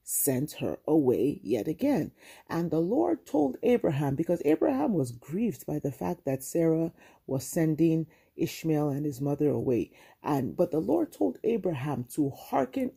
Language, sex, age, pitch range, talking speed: English, female, 40-59, 145-190 Hz, 155 wpm